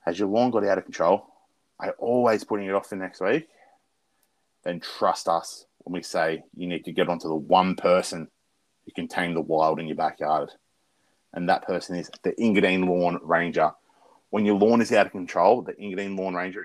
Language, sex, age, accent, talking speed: English, male, 30-49, Australian, 205 wpm